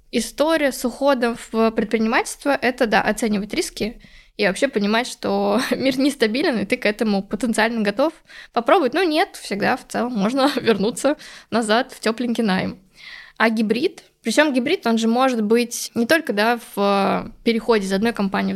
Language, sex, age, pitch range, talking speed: Russian, female, 20-39, 205-250 Hz, 155 wpm